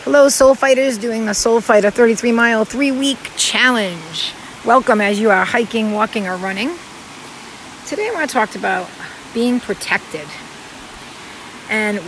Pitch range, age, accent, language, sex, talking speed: 200-240 Hz, 40-59, American, English, female, 145 wpm